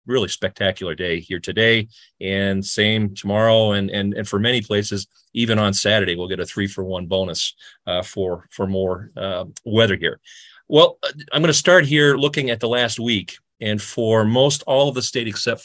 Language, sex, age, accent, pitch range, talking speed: English, male, 30-49, American, 95-115 Hz, 190 wpm